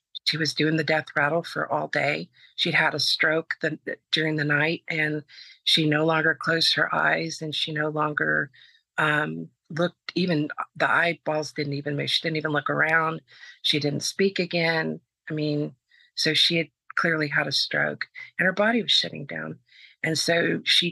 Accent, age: American, 40-59